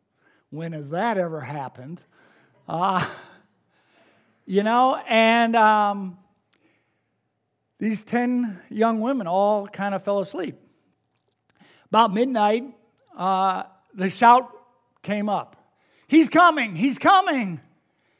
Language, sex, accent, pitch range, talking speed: English, male, American, 185-250 Hz, 100 wpm